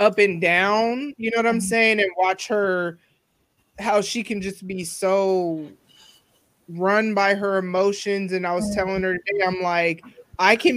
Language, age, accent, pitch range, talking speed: English, 20-39, American, 175-210 Hz, 175 wpm